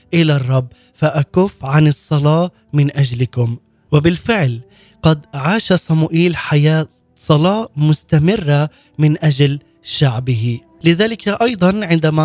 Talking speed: 100 wpm